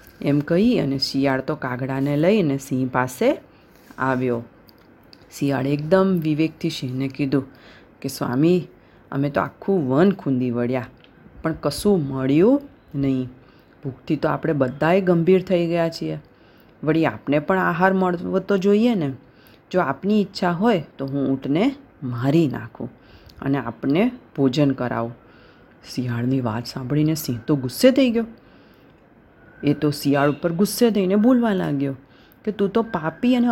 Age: 30-49